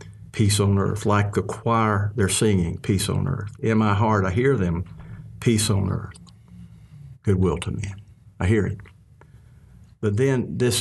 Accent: American